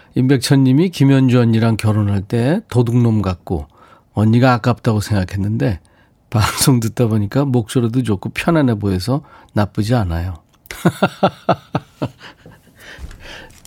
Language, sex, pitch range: Korean, male, 100-135 Hz